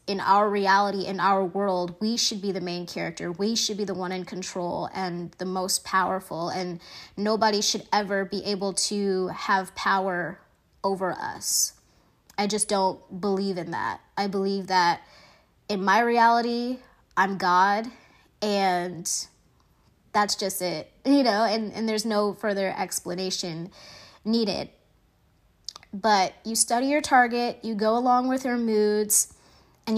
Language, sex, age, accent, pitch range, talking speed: English, female, 20-39, American, 190-225 Hz, 145 wpm